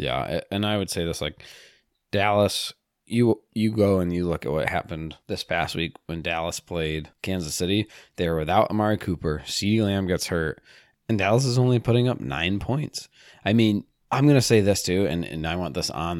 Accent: American